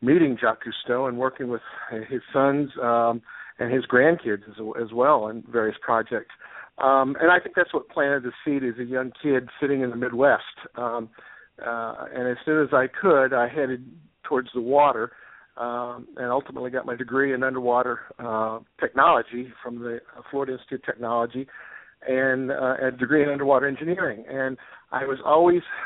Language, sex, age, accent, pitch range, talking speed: English, male, 50-69, American, 125-145 Hz, 175 wpm